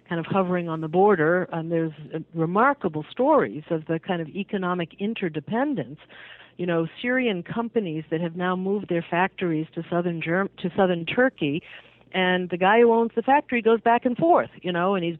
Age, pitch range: 50-69, 165-200 Hz